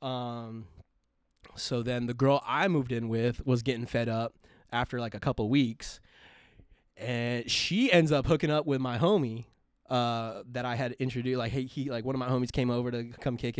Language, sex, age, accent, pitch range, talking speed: English, male, 20-39, American, 115-145 Hz, 200 wpm